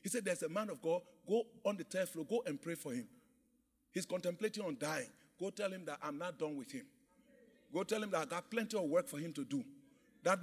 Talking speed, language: 255 wpm, English